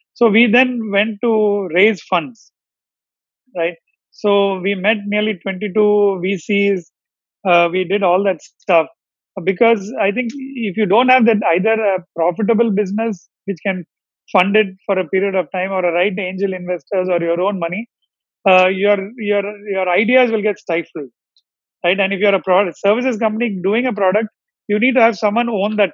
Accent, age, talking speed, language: Indian, 30-49, 180 wpm, English